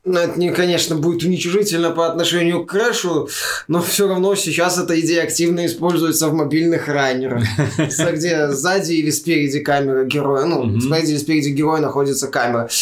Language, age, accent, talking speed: Russian, 20-39, native, 155 wpm